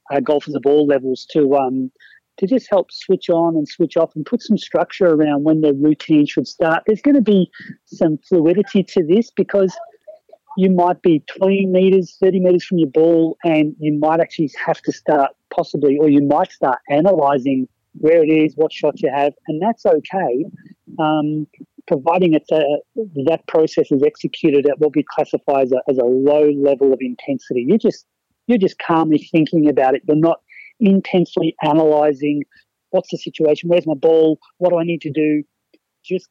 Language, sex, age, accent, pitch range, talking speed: English, male, 40-59, Australian, 145-175 Hz, 180 wpm